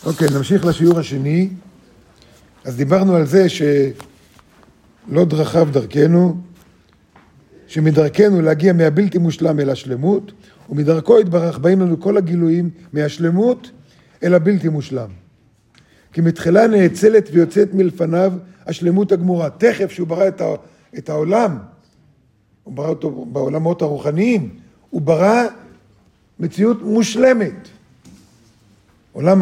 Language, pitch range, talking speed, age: Hebrew, 155-205 Hz, 105 wpm, 50-69